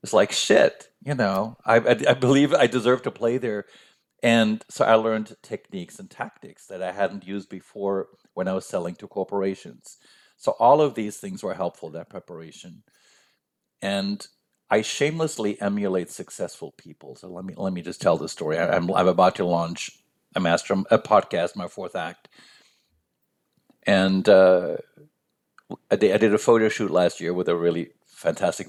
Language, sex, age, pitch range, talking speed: English, male, 50-69, 95-120 Hz, 170 wpm